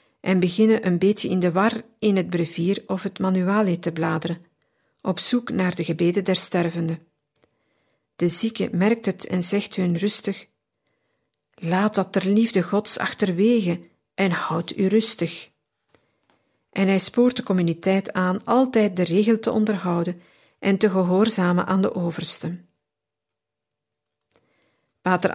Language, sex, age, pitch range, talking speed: Dutch, female, 50-69, 175-210 Hz, 135 wpm